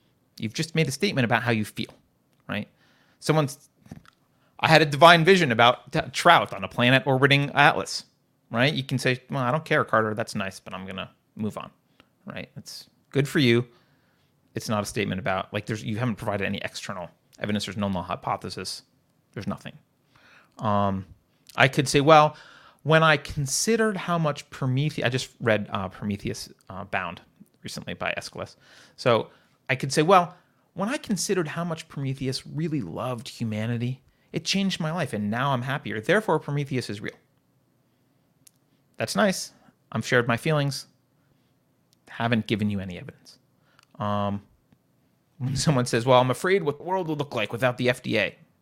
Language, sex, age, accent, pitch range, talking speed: English, male, 30-49, American, 115-155 Hz, 165 wpm